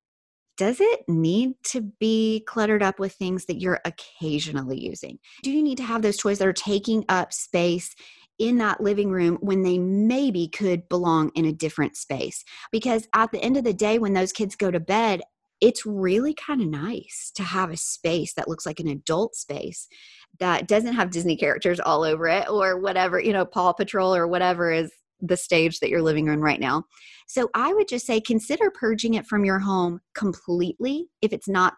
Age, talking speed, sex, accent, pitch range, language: 30-49, 200 wpm, female, American, 165-215 Hz, English